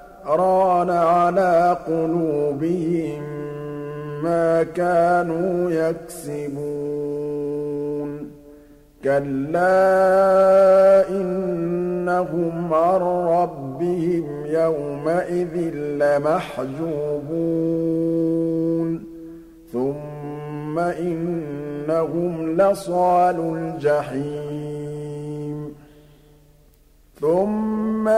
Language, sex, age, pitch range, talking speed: Arabic, male, 50-69, 150-175 Hz, 30 wpm